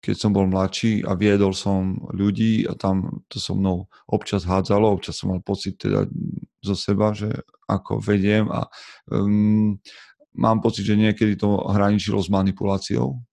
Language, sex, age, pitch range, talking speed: Slovak, male, 30-49, 95-105 Hz, 155 wpm